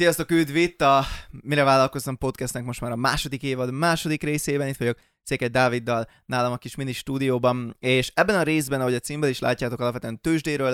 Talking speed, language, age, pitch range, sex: 185 wpm, Hungarian, 20-39, 120-140 Hz, male